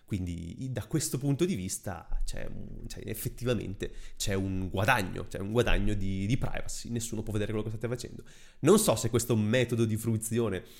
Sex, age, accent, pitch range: male, 30-49, native, 100-120 Hz